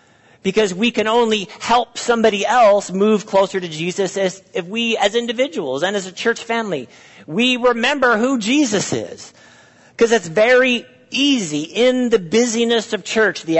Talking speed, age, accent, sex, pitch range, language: 155 wpm, 50-69, American, male, 150-210 Hz, English